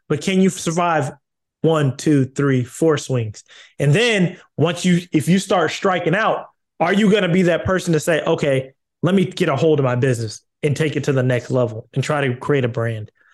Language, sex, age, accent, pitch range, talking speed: English, male, 20-39, American, 150-195 Hz, 220 wpm